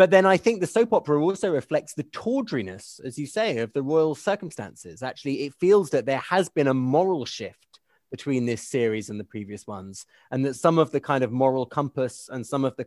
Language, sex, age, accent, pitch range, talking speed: English, male, 30-49, British, 120-150 Hz, 225 wpm